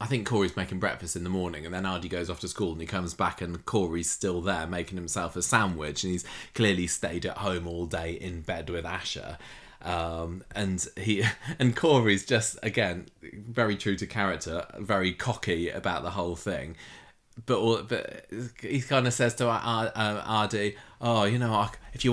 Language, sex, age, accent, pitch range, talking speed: English, male, 20-39, British, 90-110 Hz, 195 wpm